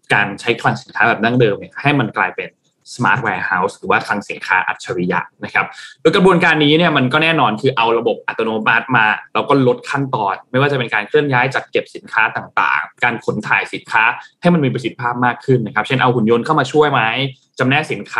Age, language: 20-39, Thai